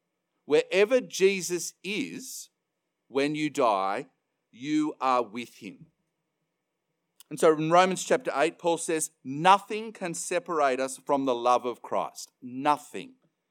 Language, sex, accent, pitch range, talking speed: English, male, Australian, 135-190 Hz, 125 wpm